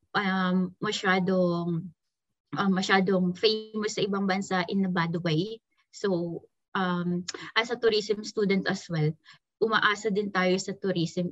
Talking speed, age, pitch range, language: 135 wpm, 20-39, 180-210 Hz, Filipino